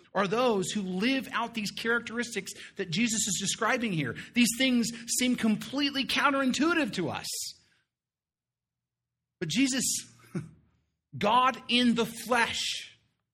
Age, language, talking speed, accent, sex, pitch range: 40-59, English, 110 wpm, American, male, 160-240 Hz